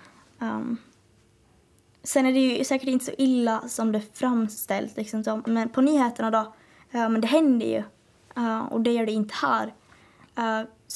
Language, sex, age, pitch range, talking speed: Swedish, female, 20-39, 225-260 Hz, 165 wpm